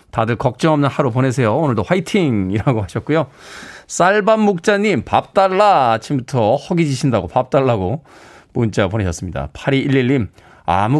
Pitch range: 120-170 Hz